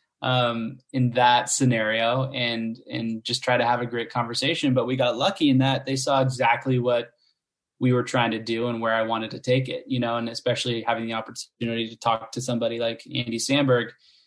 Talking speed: 205 wpm